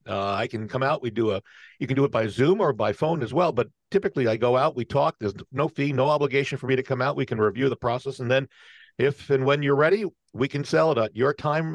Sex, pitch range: male, 110-145 Hz